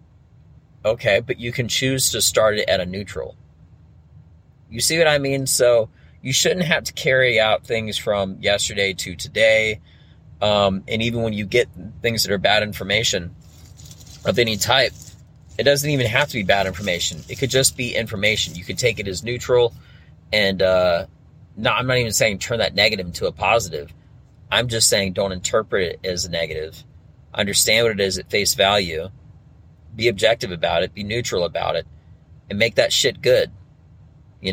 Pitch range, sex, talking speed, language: 95-115 Hz, male, 180 wpm, English